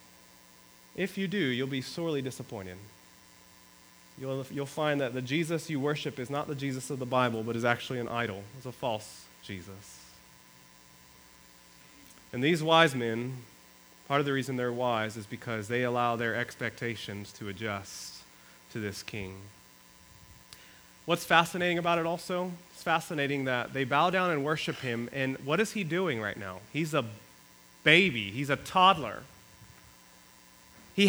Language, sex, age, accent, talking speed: English, male, 30-49, American, 155 wpm